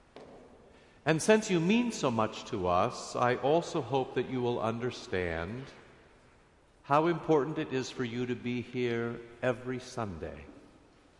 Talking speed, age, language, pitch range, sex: 140 wpm, 50-69, English, 120-155 Hz, male